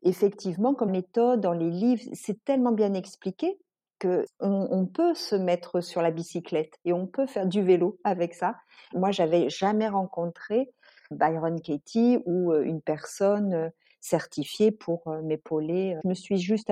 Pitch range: 160-195 Hz